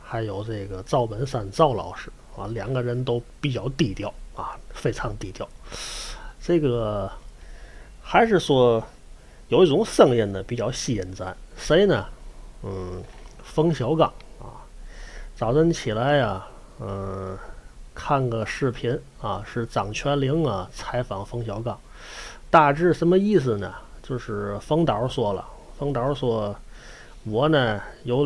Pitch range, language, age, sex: 105-150 Hz, Chinese, 30-49, male